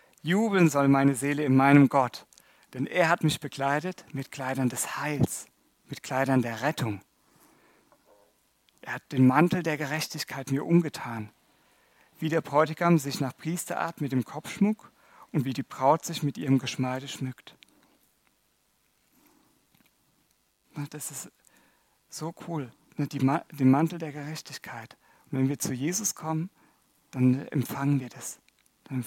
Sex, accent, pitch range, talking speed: male, German, 130-160 Hz, 135 wpm